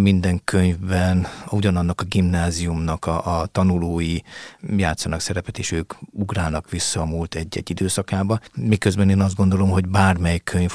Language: Hungarian